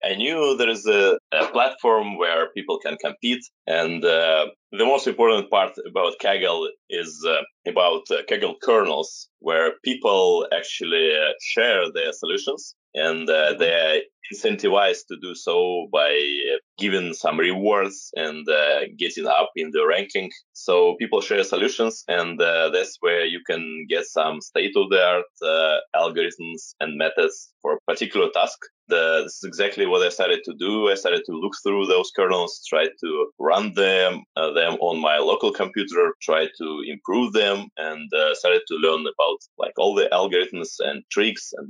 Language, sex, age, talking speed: English, male, 20-39, 170 wpm